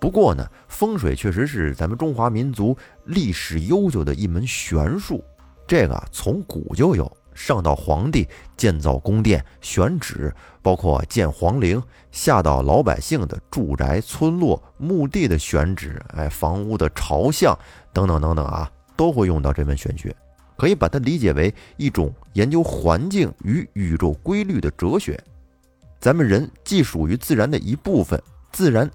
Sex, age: male, 30-49